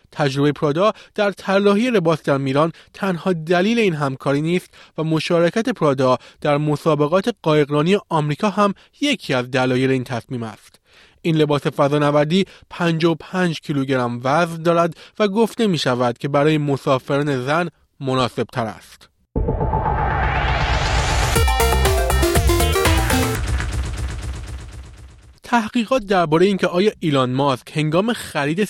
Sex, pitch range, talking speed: male, 140-185 Hz, 115 wpm